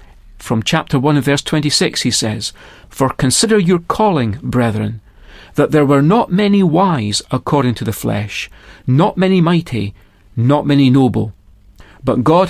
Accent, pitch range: British, 110-175 Hz